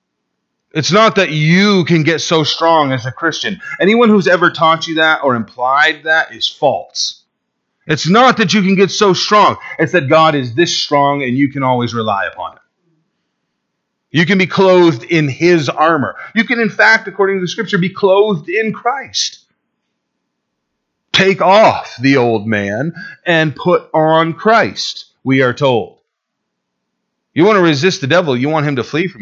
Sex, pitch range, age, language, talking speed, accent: male, 120-185 Hz, 40-59, English, 175 wpm, American